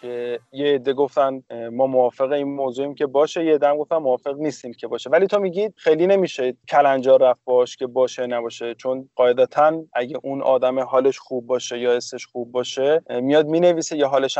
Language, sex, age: Persian, male, 20-39